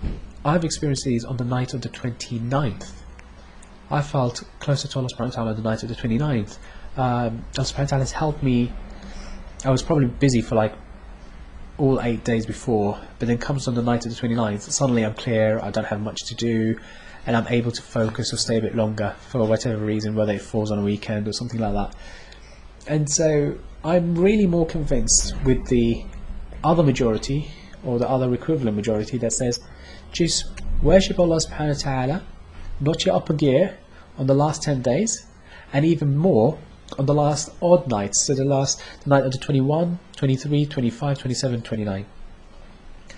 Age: 20-39